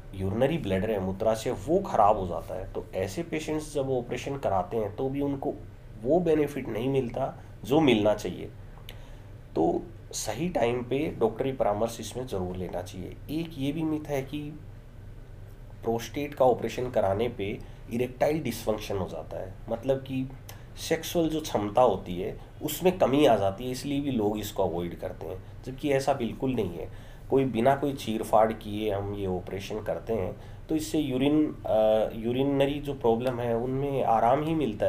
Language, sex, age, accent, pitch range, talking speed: Hindi, male, 30-49, native, 105-135 Hz, 165 wpm